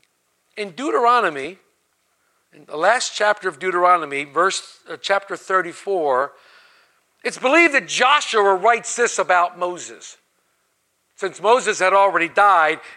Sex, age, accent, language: male, 50-69, American, English